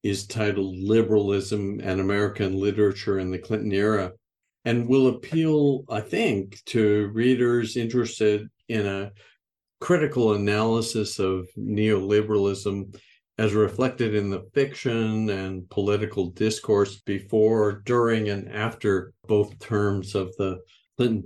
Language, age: English, 50-69